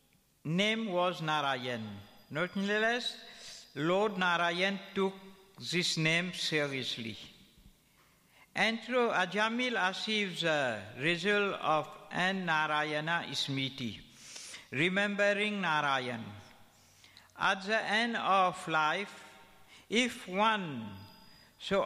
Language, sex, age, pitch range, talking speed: Italian, male, 60-79, 140-195 Hz, 80 wpm